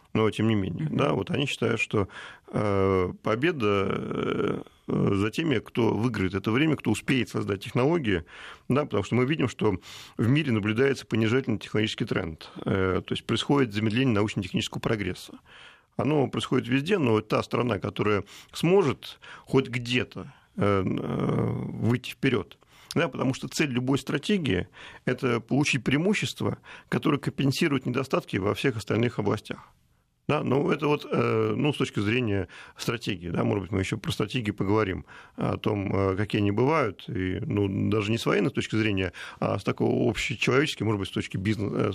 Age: 40-59